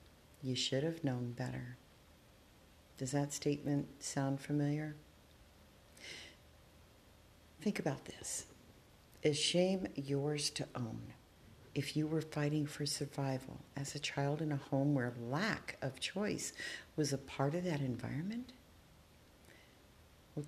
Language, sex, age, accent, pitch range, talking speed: English, female, 50-69, American, 130-170 Hz, 120 wpm